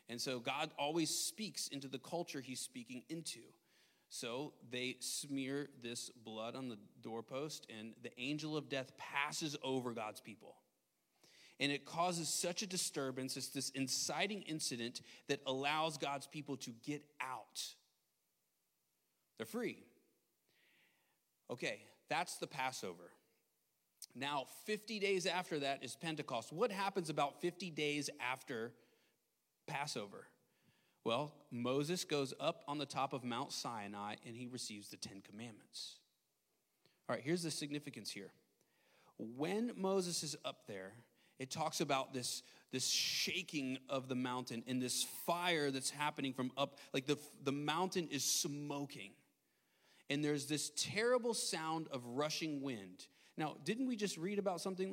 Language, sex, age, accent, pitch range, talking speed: English, male, 30-49, American, 130-165 Hz, 140 wpm